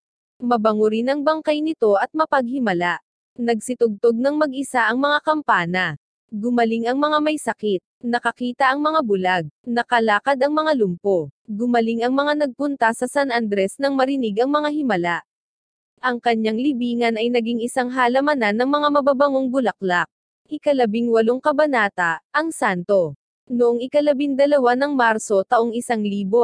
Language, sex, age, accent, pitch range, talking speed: Filipino, female, 20-39, native, 220-280 Hz, 130 wpm